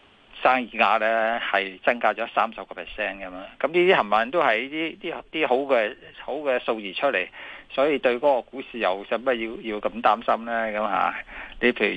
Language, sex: Chinese, male